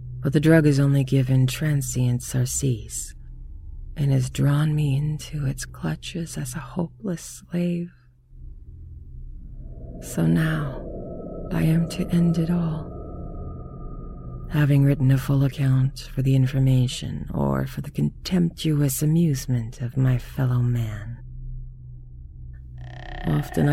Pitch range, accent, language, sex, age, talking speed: 115-150 Hz, American, English, female, 40-59, 115 wpm